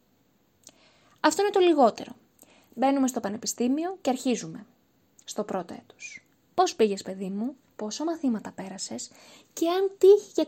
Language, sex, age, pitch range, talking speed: Greek, female, 20-39, 225-330 Hz, 125 wpm